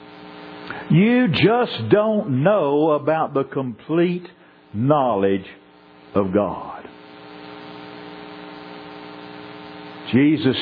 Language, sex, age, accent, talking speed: English, male, 60-79, American, 60 wpm